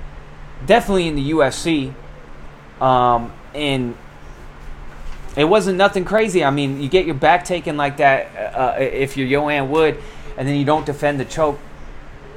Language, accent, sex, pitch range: English, American, male, 115-165 Hz